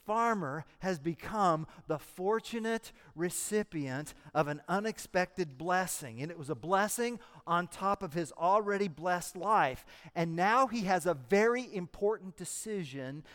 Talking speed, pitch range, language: 135 wpm, 155-225 Hz, English